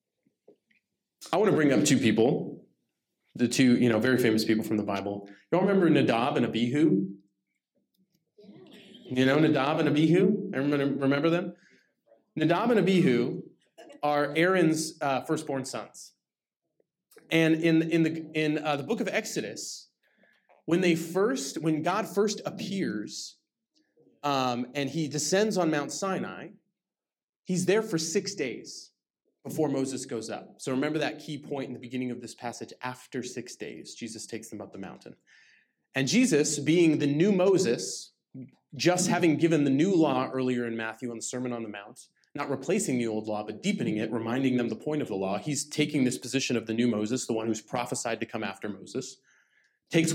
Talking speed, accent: 170 wpm, American